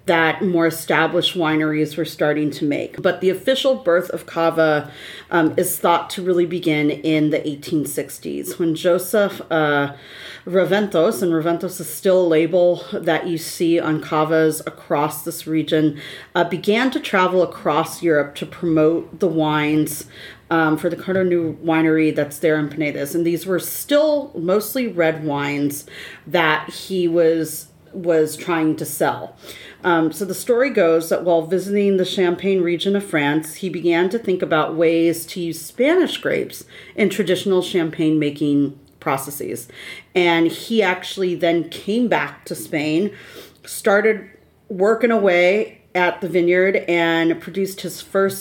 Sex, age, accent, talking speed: female, 40-59, American, 150 wpm